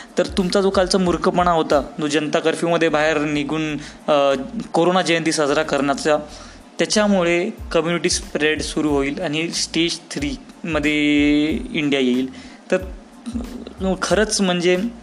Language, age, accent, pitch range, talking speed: Hindi, 20-39, native, 155-190 Hz, 120 wpm